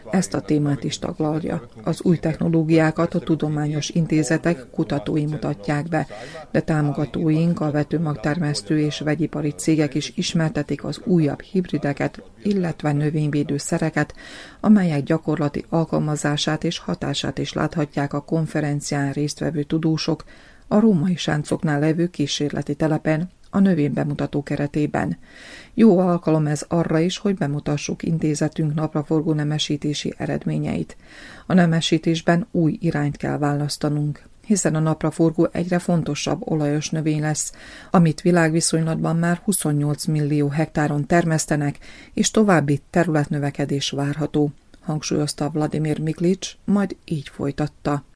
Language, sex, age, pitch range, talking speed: Hungarian, female, 30-49, 150-165 Hz, 115 wpm